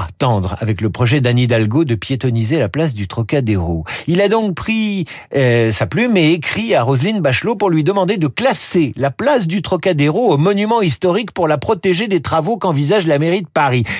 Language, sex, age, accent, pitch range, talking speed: French, male, 50-69, French, 120-185 Hz, 195 wpm